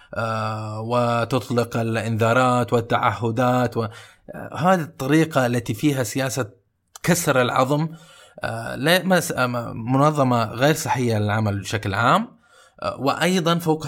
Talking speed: 80 wpm